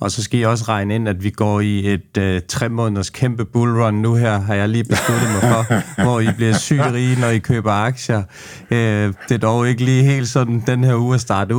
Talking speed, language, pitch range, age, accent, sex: 240 wpm, Danish, 105-120 Hz, 30-49, native, male